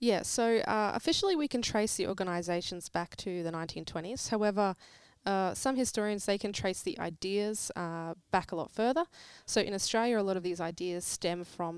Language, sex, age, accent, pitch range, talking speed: English, female, 20-39, Australian, 175-215 Hz, 190 wpm